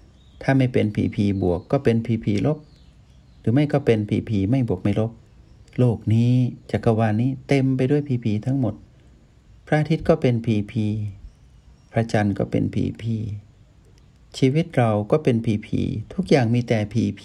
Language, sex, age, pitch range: Thai, male, 60-79, 100-130 Hz